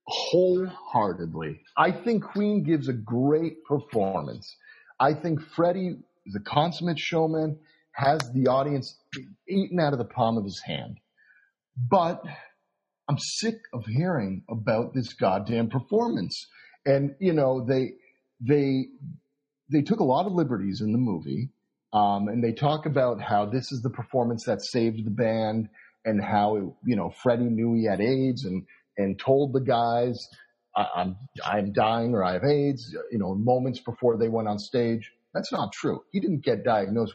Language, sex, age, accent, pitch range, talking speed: English, male, 40-59, American, 115-155 Hz, 160 wpm